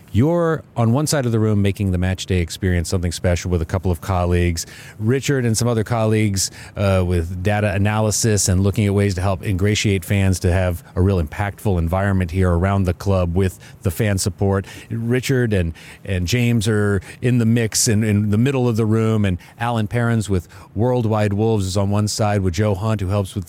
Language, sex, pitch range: English, male, 95-120 Hz